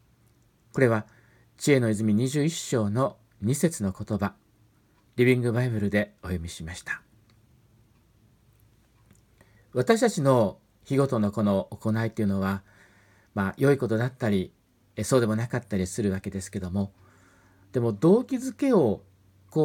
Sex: male